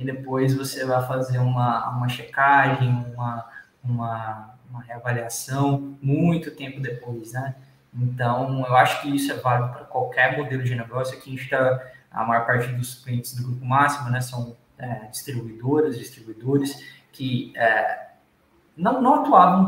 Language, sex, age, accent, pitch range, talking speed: Portuguese, male, 20-39, Brazilian, 125-150 Hz, 150 wpm